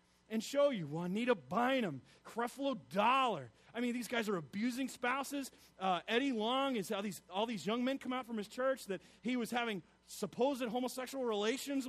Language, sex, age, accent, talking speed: English, male, 40-59, American, 180 wpm